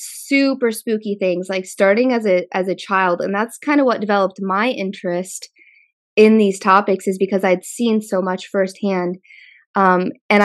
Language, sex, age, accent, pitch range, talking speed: English, female, 20-39, American, 190-225 Hz, 170 wpm